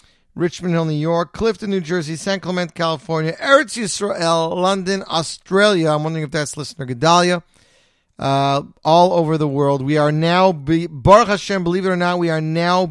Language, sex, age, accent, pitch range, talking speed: English, male, 40-59, American, 145-185 Hz, 175 wpm